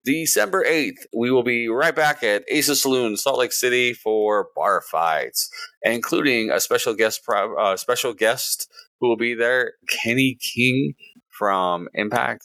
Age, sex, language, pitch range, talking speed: 30-49, male, English, 95-130 Hz, 150 wpm